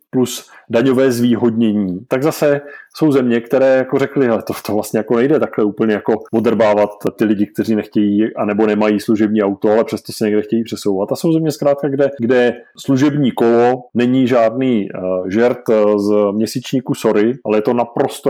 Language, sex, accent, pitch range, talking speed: Czech, male, native, 110-140 Hz, 175 wpm